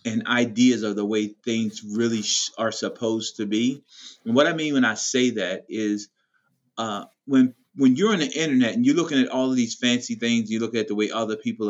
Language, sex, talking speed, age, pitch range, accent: English, male, 225 wpm, 30-49, 115-150 Hz, American